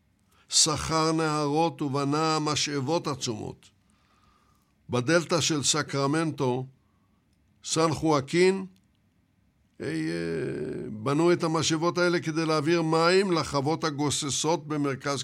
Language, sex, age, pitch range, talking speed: Hebrew, male, 60-79, 130-170 Hz, 80 wpm